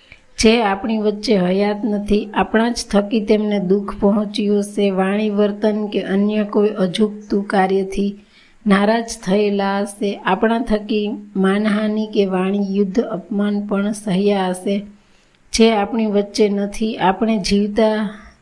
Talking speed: 115 wpm